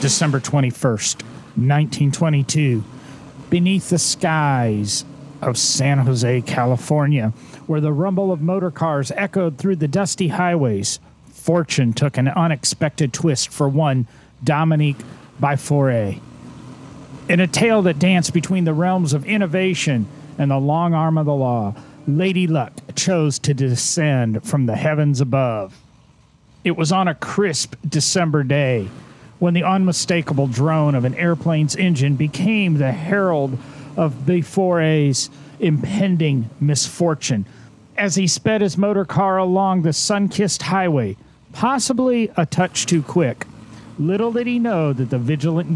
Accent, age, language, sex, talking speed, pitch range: American, 40-59, English, male, 130 wpm, 130-175 Hz